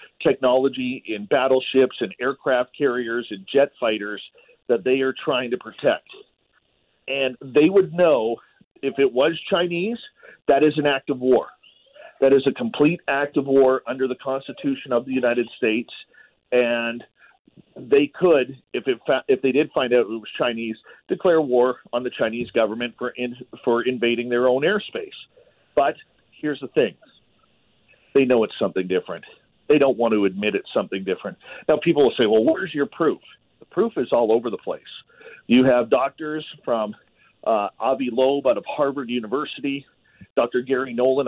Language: English